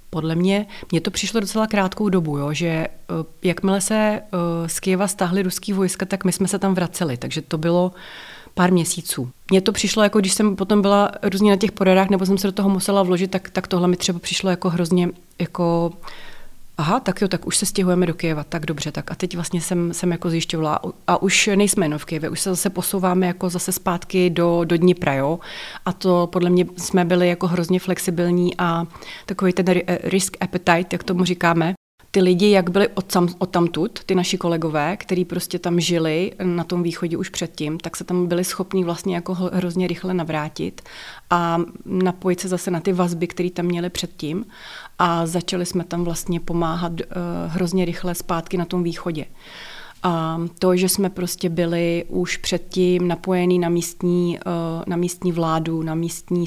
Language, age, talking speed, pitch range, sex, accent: Czech, 30-49, 190 wpm, 170-190 Hz, female, native